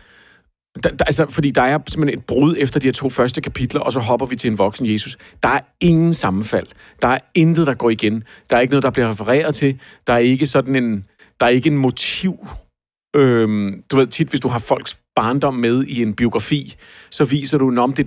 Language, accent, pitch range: Danish, native, 115-145 Hz